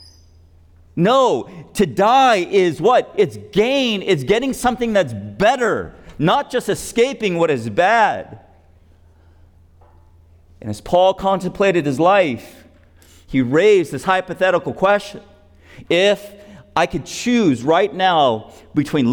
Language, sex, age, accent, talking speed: English, male, 50-69, American, 115 wpm